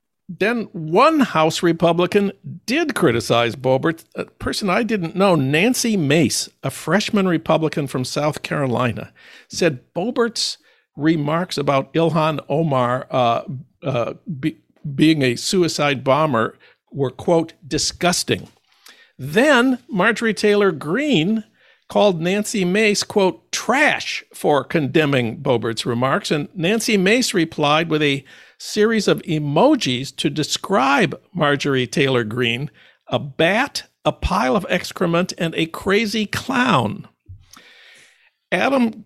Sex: male